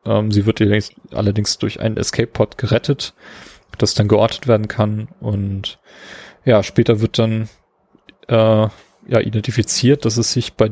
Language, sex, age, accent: German, male, 30-49, German